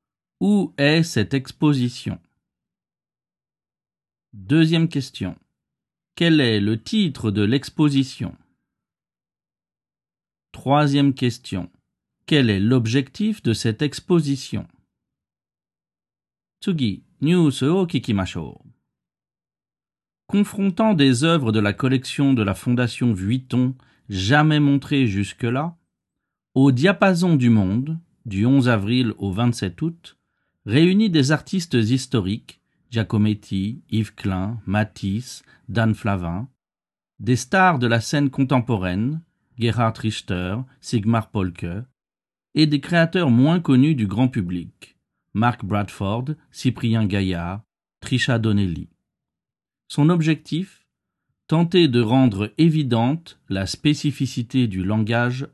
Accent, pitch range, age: French, 105-150 Hz, 50-69